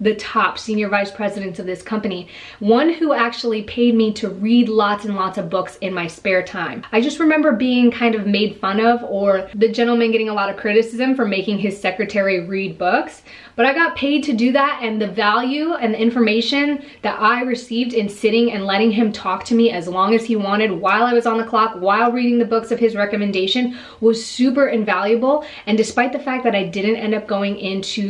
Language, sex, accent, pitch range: English, female, American, 200-245 Hz